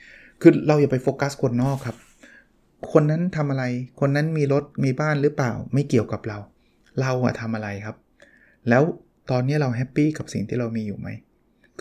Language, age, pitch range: Thai, 20-39, 115-140 Hz